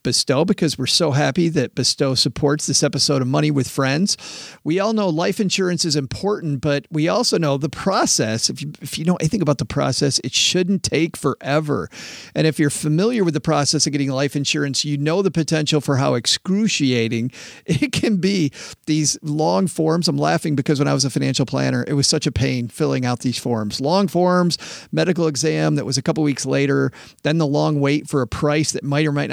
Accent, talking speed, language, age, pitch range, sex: American, 210 wpm, English, 40-59, 140-175 Hz, male